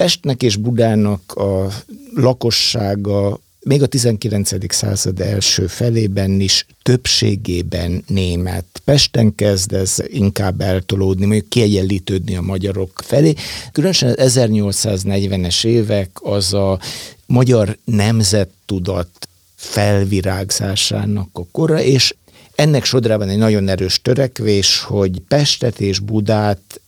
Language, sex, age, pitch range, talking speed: Hungarian, male, 60-79, 95-115 Hz, 105 wpm